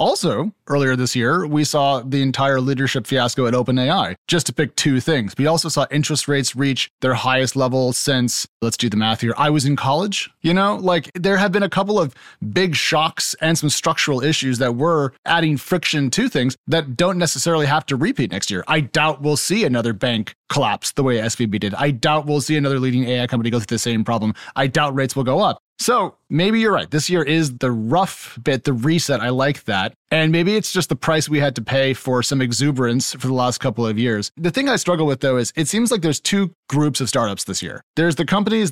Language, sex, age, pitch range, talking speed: English, male, 30-49, 125-160 Hz, 230 wpm